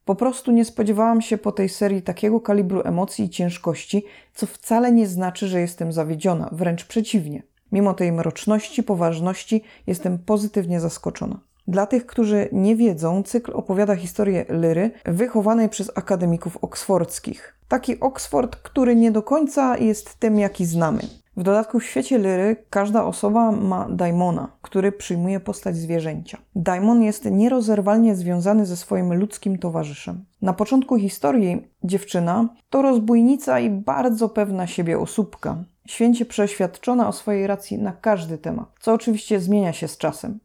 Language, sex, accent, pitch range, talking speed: Polish, female, native, 180-225 Hz, 145 wpm